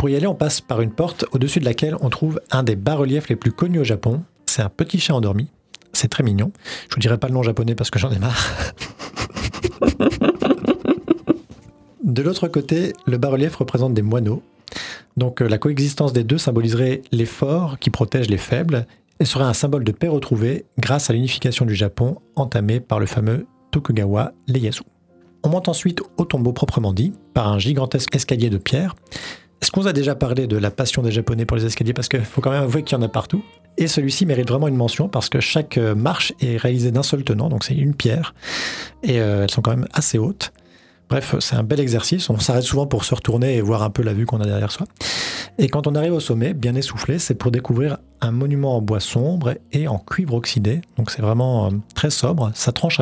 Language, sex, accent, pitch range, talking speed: French, male, French, 115-145 Hz, 215 wpm